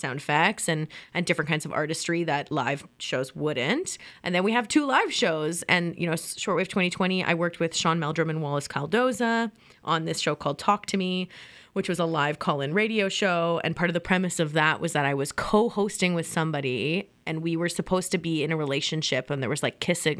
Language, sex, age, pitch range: English, female, 20-39, 160-200 Hz